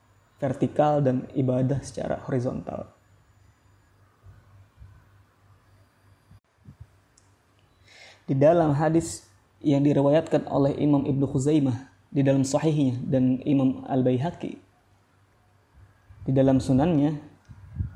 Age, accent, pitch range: 20-39, native, 105-145 Hz